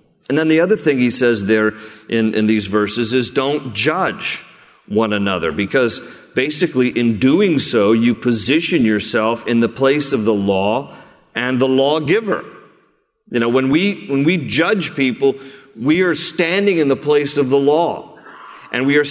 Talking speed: 165 wpm